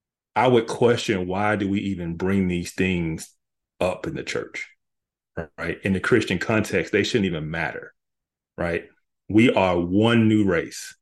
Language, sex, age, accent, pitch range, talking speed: English, male, 30-49, American, 95-115 Hz, 160 wpm